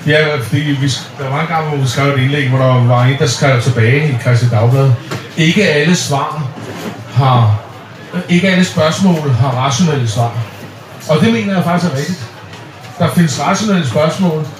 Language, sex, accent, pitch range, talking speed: Danish, male, native, 130-180 Hz, 160 wpm